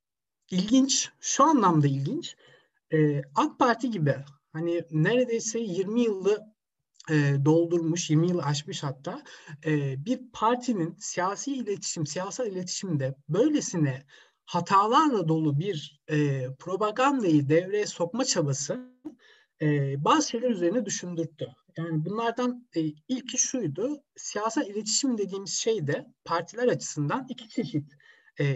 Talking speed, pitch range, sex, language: 115 wpm, 150-235 Hz, male, Turkish